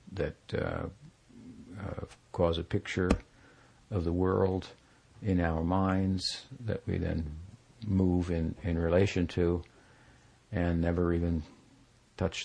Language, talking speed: English, 115 wpm